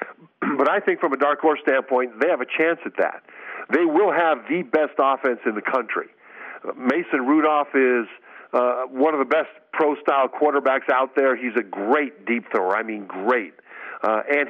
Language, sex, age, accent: English, male, 50-69, American